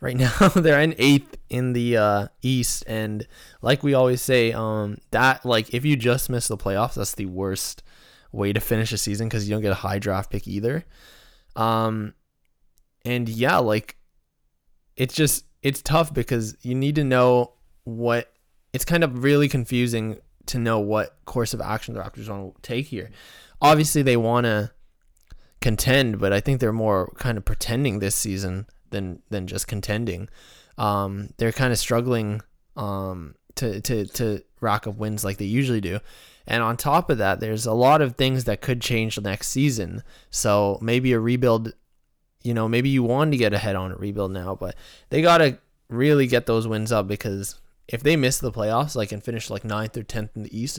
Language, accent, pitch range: English, American, 105-130 Hz